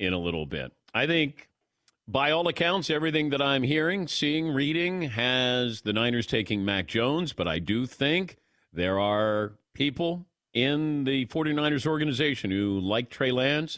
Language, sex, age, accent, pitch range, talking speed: English, male, 50-69, American, 110-155 Hz, 155 wpm